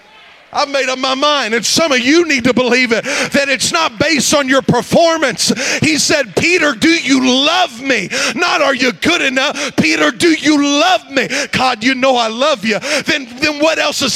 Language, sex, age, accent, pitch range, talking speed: English, male, 40-59, American, 250-295 Hz, 205 wpm